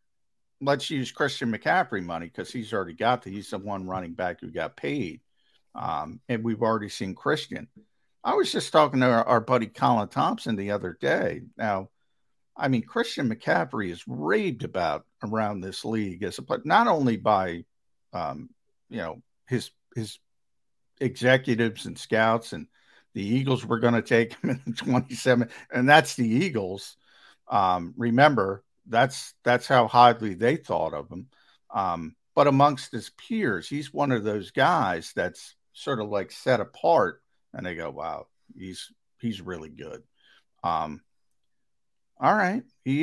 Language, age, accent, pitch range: English, 50-69, American, 105-135 Hz